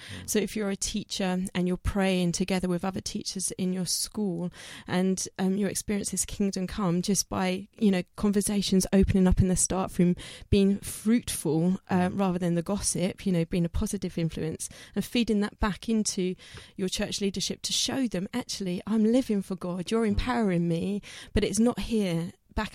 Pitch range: 185-220 Hz